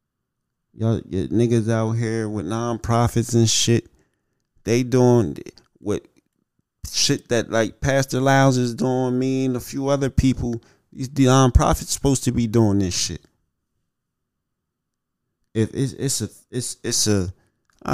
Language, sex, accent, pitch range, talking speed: English, male, American, 90-125 Hz, 135 wpm